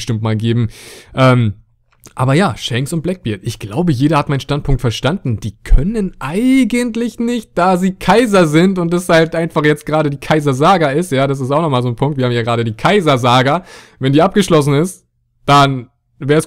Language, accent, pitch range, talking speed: German, German, 120-150 Hz, 195 wpm